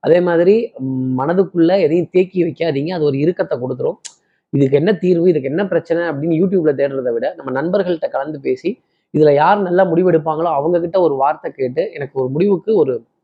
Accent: native